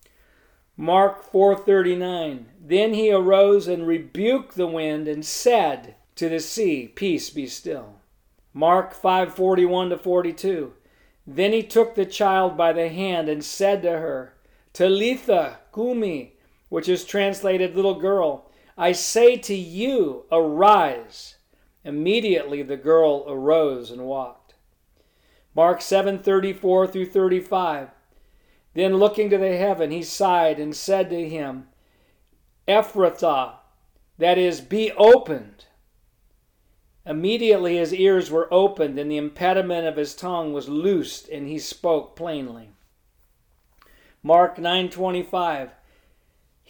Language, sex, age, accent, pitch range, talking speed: English, male, 50-69, American, 155-195 Hz, 125 wpm